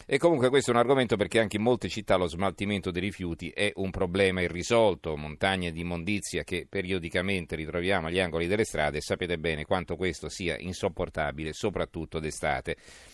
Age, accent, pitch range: 40-59, native, 90-110 Hz